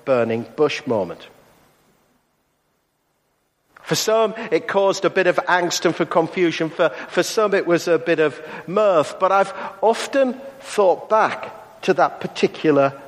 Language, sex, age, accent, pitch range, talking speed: English, male, 50-69, British, 130-170 Hz, 140 wpm